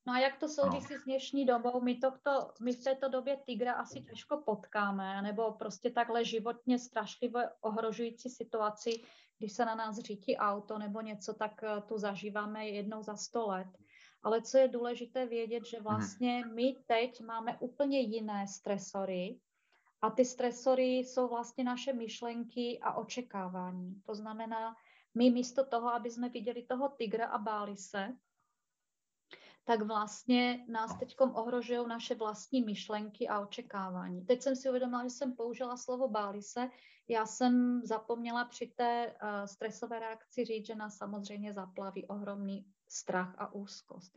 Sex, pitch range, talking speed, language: female, 205-245 Hz, 150 wpm, Czech